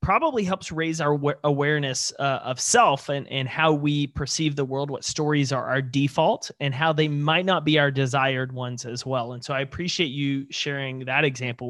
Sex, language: male, English